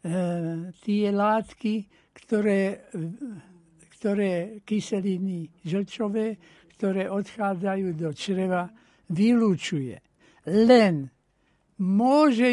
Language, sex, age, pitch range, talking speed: Slovak, male, 60-79, 185-220 Hz, 60 wpm